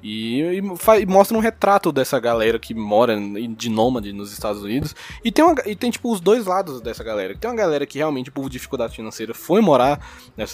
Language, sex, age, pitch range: Portuguese, male, 20-39, 115-170 Hz